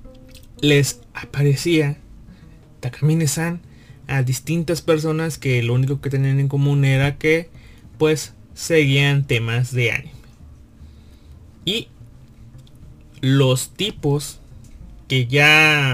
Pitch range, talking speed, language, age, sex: 125-155 Hz, 95 wpm, Spanish, 20-39, male